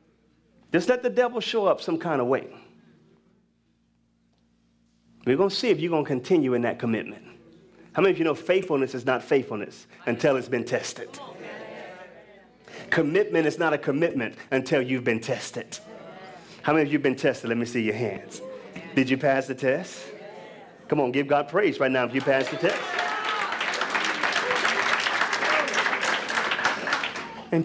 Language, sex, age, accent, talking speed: English, male, 30-49, American, 160 wpm